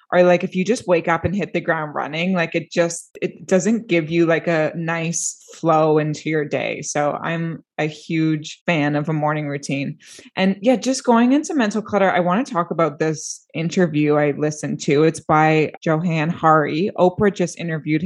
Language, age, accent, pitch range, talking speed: English, 20-39, American, 155-185 Hz, 195 wpm